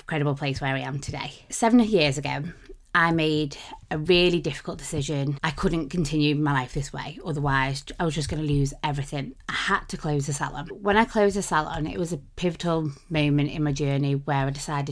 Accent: British